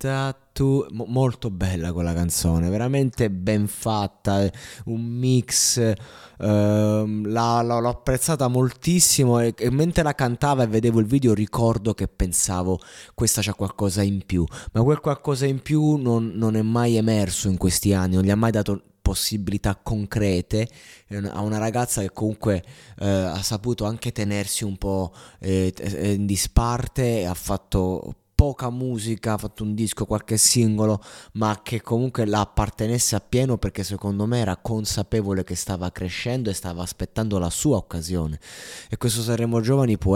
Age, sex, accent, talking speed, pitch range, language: 20-39, male, native, 150 wpm, 100-120 Hz, Italian